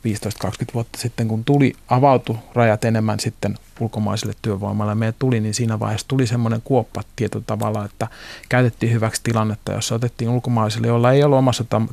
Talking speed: 160 wpm